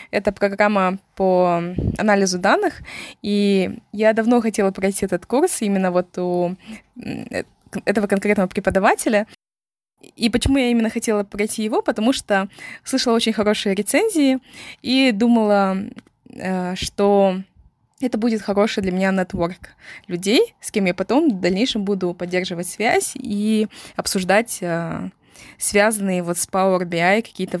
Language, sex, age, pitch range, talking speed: Russian, female, 20-39, 190-230 Hz, 125 wpm